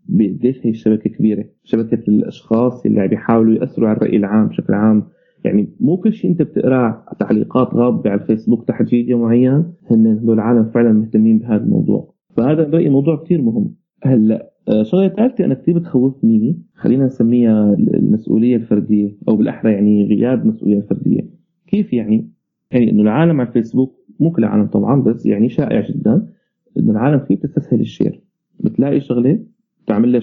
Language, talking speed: Arabic, 160 wpm